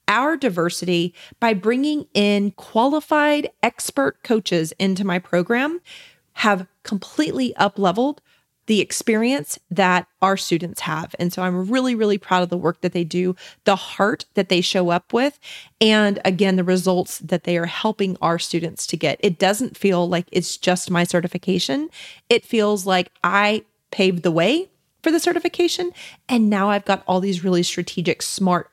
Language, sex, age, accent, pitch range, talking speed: English, female, 30-49, American, 180-240 Hz, 165 wpm